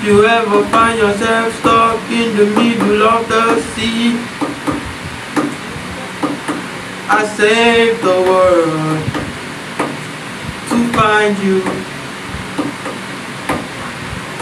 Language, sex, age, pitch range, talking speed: English, male, 60-79, 195-240 Hz, 75 wpm